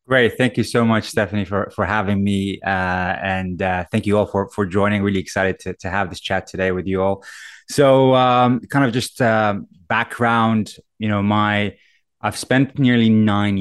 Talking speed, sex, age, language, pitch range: 195 wpm, male, 20-39, English, 90-105 Hz